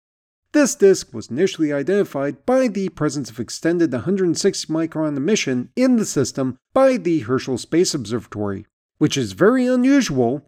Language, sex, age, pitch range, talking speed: English, male, 40-59, 130-205 Hz, 145 wpm